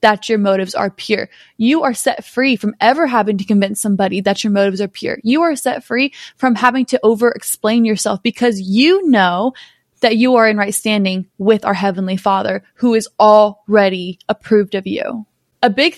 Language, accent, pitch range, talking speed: English, American, 200-235 Hz, 190 wpm